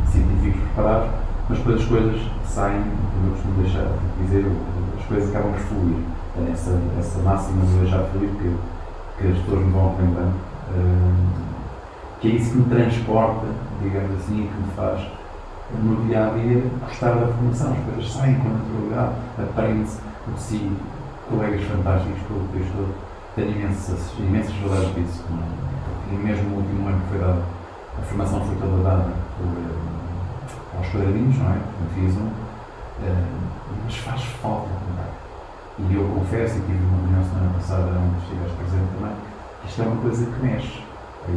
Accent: Portuguese